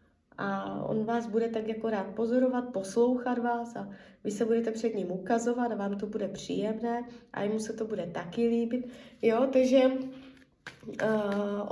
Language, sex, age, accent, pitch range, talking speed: Czech, female, 20-39, native, 215-245 Hz, 170 wpm